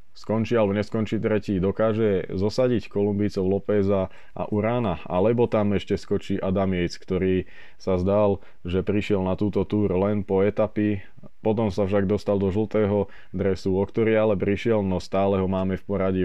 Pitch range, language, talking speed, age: 90-100 Hz, Slovak, 165 wpm, 20-39